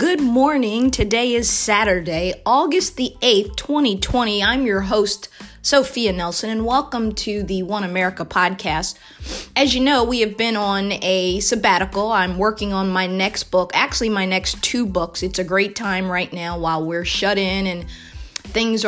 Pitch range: 195-240 Hz